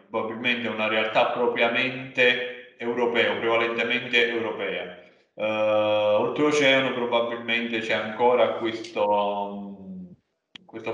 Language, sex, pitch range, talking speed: Italian, male, 105-130 Hz, 80 wpm